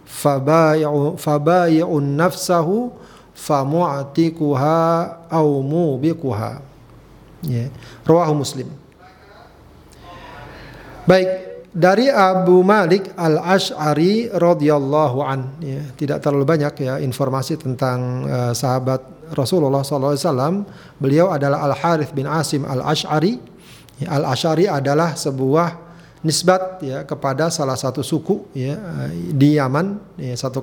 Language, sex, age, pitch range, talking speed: Indonesian, male, 40-59, 135-165 Hz, 90 wpm